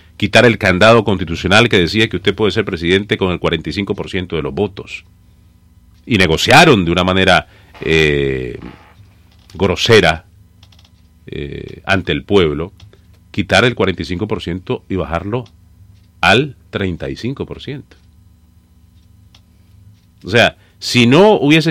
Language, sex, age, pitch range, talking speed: English, male, 40-59, 90-115 Hz, 110 wpm